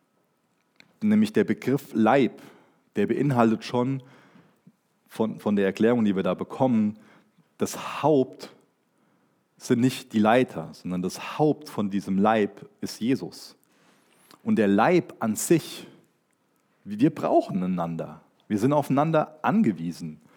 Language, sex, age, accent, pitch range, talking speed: German, male, 40-59, German, 100-140 Hz, 120 wpm